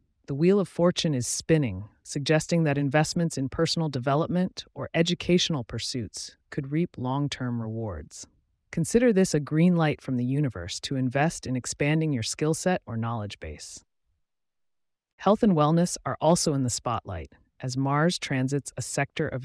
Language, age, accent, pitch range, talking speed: English, 30-49, American, 120-165 Hz, 155 wpm